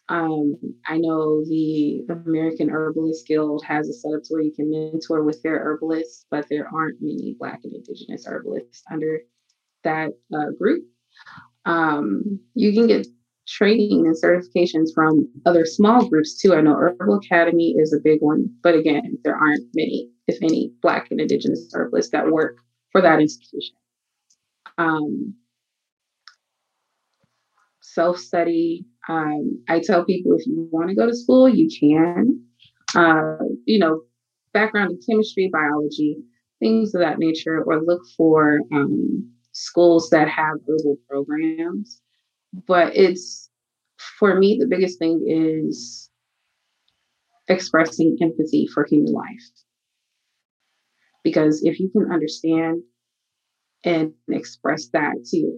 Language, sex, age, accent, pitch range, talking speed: English, female, 20-39, American, 150-175 Hz, 135 wpm